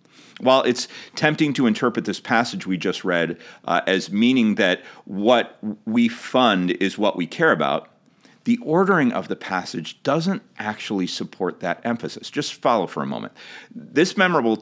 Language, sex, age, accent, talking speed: English, male, 40-59, American, 160 wpm